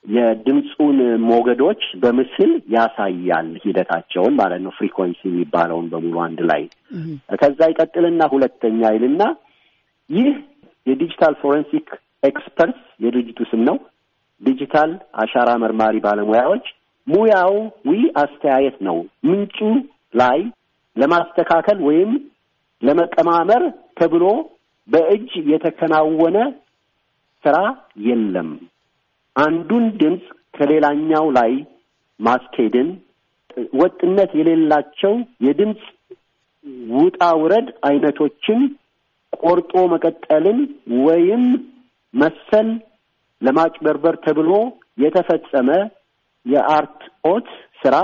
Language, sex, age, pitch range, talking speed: Amharic, male, 50-69, 135-215 Hz, 55 wpm